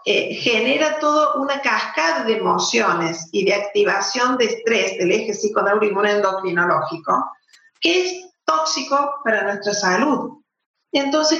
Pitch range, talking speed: 210-300 Hz, 120 wpm